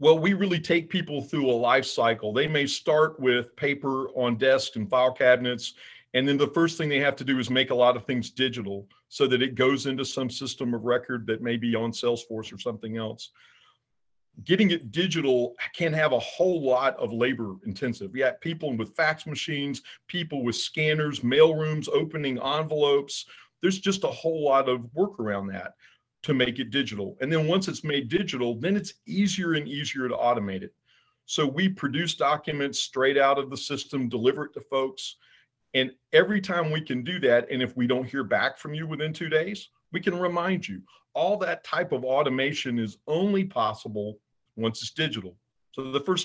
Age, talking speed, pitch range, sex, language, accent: 50-69, 195 wpm, 120-155 Hz, male, English, American